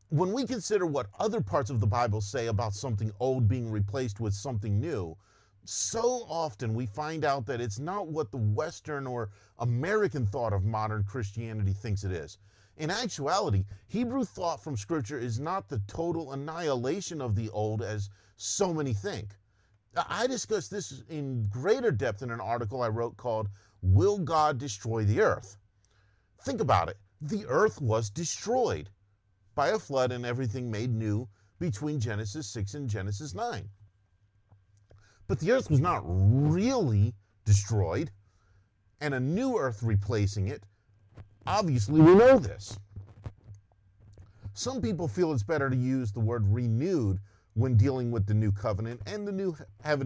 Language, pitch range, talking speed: English, 100-145 Hz, 155 wpm